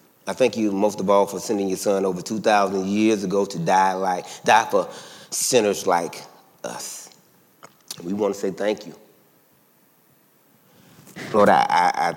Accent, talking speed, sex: American, 155 wpm, male